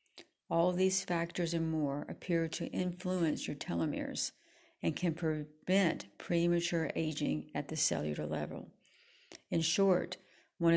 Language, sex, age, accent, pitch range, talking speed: English, female, 50-69, American, 165-185 Hz, 125 wpm